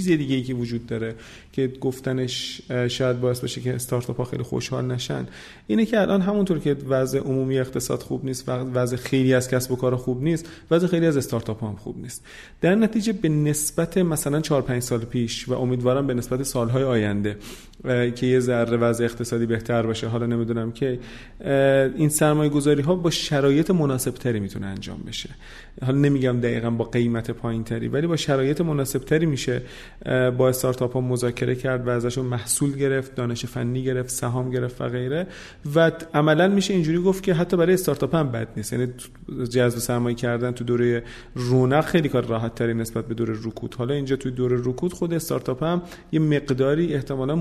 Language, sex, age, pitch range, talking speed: Persian, male, 30-49, 120-145 Hz, 170 wpm